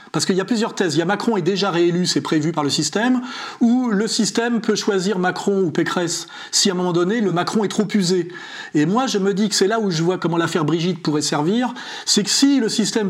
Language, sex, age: French, male, 40-59